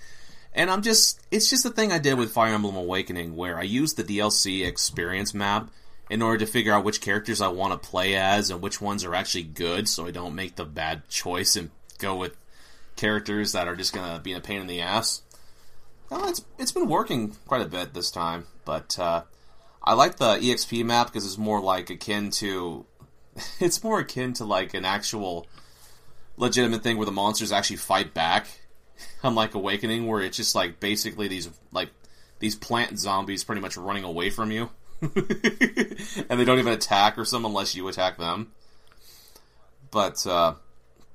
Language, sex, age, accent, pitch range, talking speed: English, male, 30-49, American, 90-115 Hz, 190 wpm